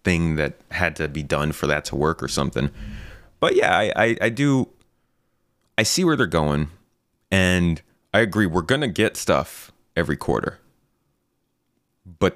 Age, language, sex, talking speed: 30-49, English, male, 160 wpm